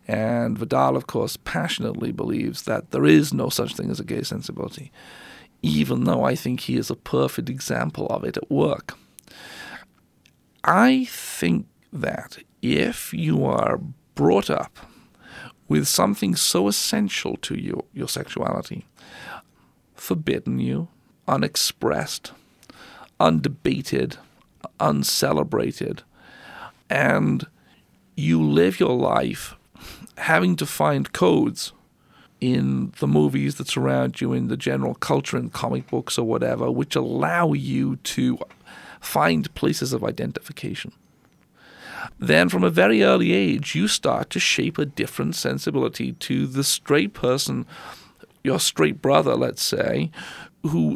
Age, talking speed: 50-69, 125 wpm